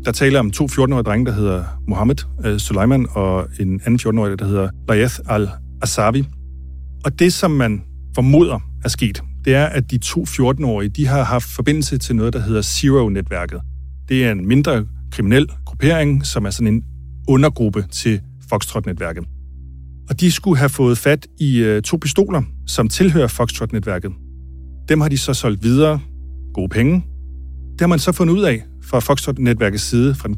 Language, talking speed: Danish, 180 wpm